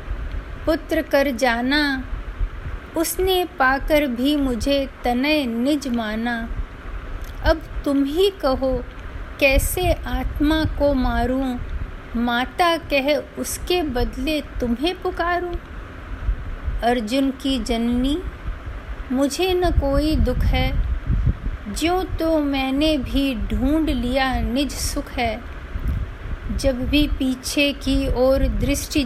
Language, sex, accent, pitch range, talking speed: Hindi, female, native, 250-300 Hz, 95 wpm